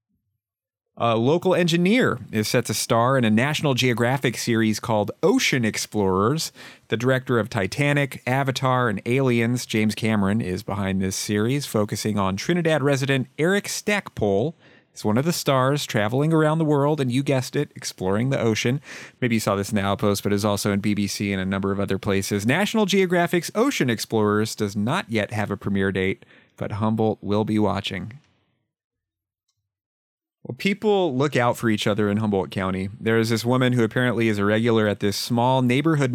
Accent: American